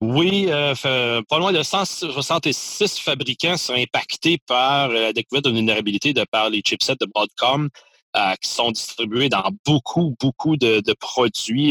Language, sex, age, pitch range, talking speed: French, male, 30-49, 110-140 Hz, 155 wpm